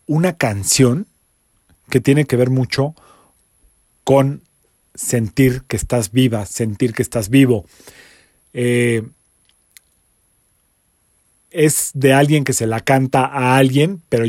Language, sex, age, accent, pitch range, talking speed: Spanish, male, 40-59, Mexican, 115-145 Hz, 115 wpm